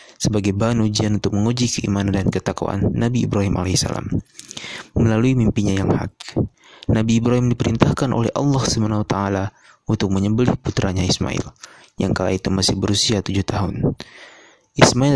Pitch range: 100-115 Hz